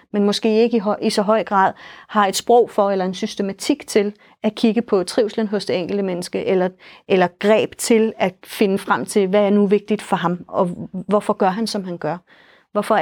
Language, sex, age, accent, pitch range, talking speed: Danish, female, 30-49, native, 195-235 Hz, 215 wpm